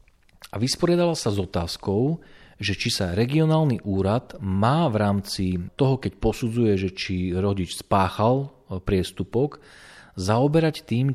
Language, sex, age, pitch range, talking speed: Slovak, male, 40-59, 95-130 Hz, 125 wpm